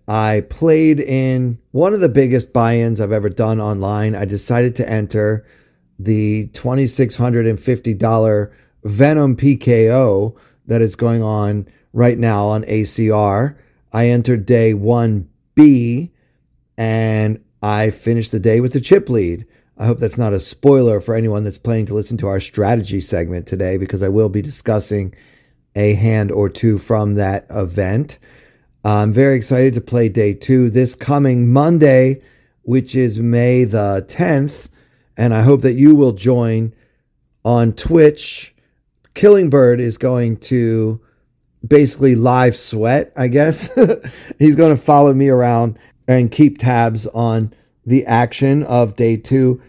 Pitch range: 105-130 Hz